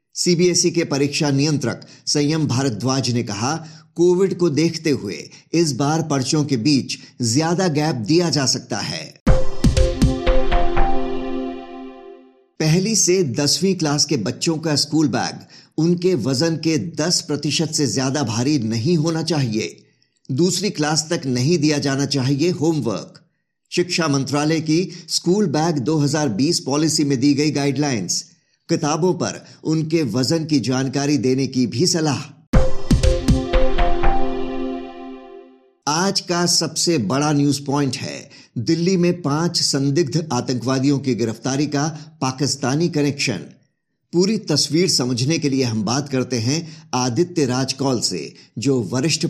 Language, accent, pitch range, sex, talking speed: Hindi, native, 130-165 Hz, male, 125 wpm